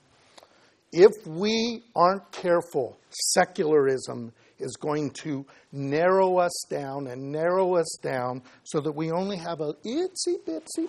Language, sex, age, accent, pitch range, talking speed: English, male, 50-69, American, 150-215 Hz, 120 wpm